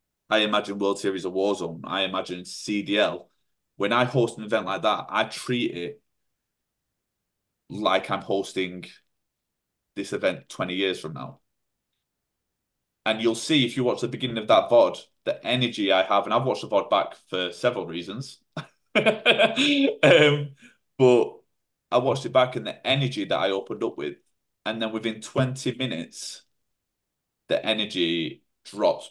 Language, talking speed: English, 155 wpm